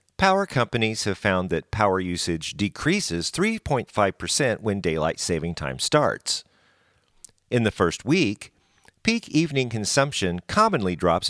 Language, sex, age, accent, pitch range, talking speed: English, male, 50-69, American, 85-130 Hz, 120 wpm